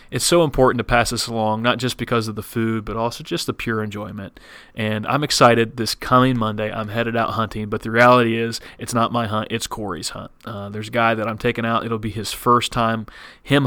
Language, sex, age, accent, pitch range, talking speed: English, male, 30-49, American, 110-130 Hz, 235 wpm